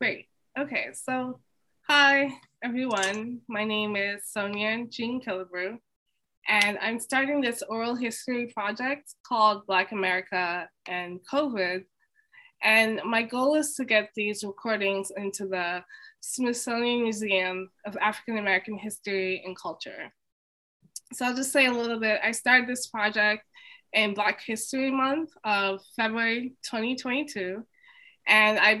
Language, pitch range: English, 200-240 Hz